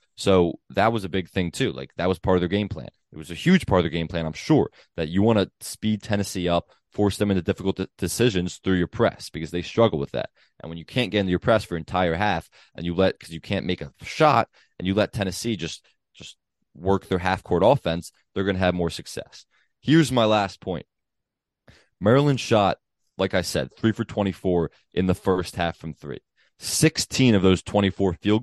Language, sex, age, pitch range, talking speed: English, male, 20-39, 85-110 Hz, 230 wpm